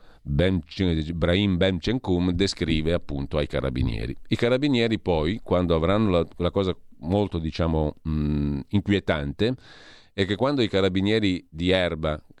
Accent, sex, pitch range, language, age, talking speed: native, male, 80-105 Hz, Italian, 40-59, 130 wpm